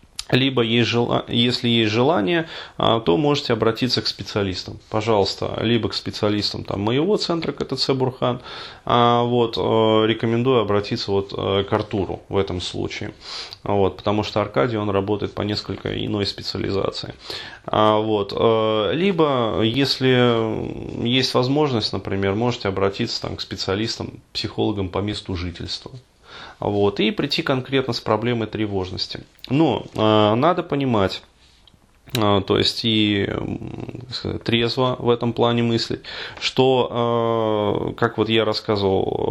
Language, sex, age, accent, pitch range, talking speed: Russian, male, 30-49, native, 105-120 Hz, 105 wpm